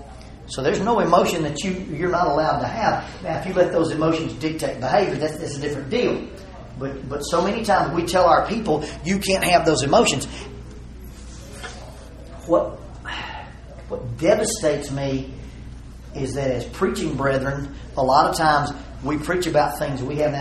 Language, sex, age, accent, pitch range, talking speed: English, male, 40-59, American, 125-155 Hz, 170 wpm